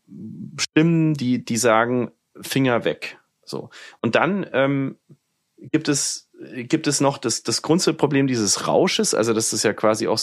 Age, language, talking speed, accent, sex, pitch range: 30-49, German, 155 wpm, German, male, 110-135 Hz